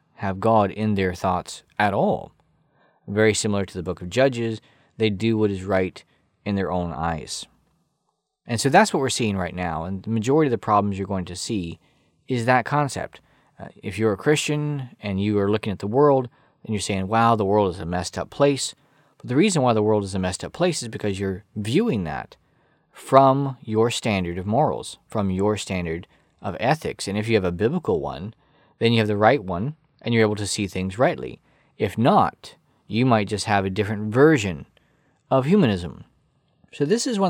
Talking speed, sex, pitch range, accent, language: 205 wpm, male, 95-130 Hz, American, English